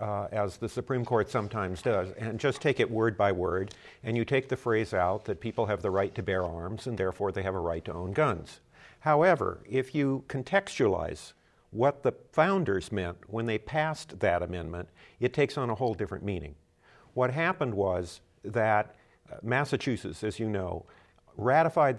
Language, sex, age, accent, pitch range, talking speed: English, male, 50-69, American, 95-125 Hz, 180 wpm